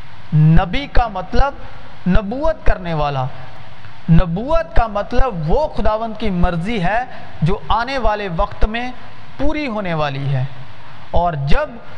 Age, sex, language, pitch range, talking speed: 40-59, male, Urdu, 150-250 Hz, 125 wpm